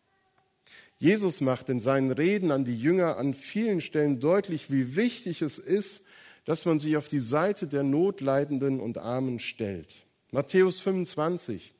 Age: 50-69